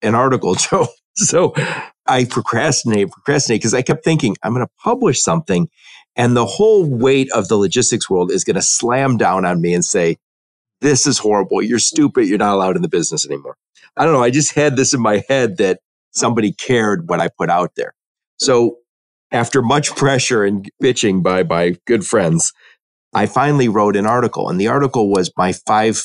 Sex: male